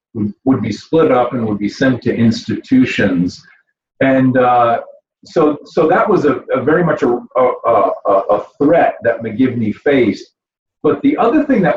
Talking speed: 170 wpm